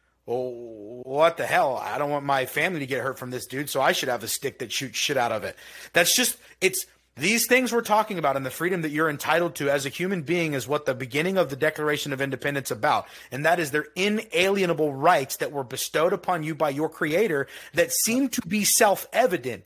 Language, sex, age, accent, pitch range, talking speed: English, male, 30-49, American, 145-195 Hz, 230 wpm